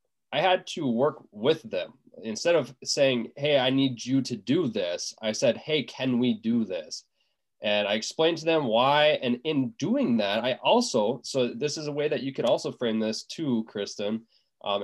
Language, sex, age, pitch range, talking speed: English, male, 20-39, 110-150 Hz, 200 wpm